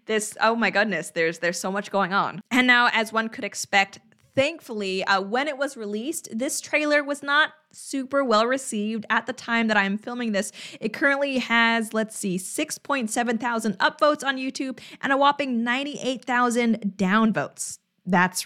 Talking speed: 180 wpm